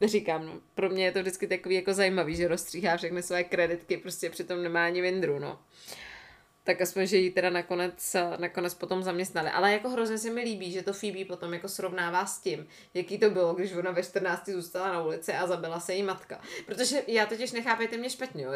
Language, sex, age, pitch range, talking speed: Czech, female, 20-39, 185-225 Hz, 215 wpm